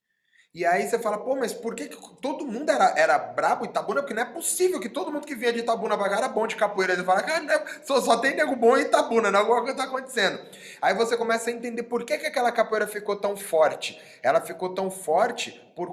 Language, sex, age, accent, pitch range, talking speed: Portuguese, male, 20-39, Brazilian, 185-235 Hz, 245 wpm